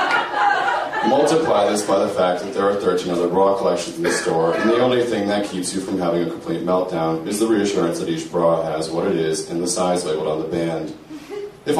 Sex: male